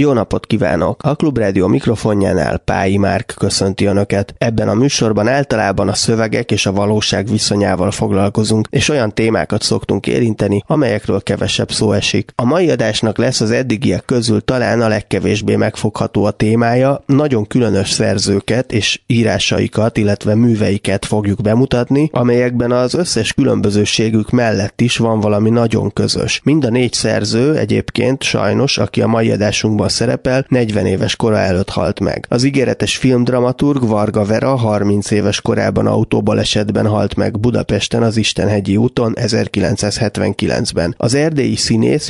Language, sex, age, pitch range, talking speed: Hungarian, male, 20-39, 105-120 Hz, 140 wpm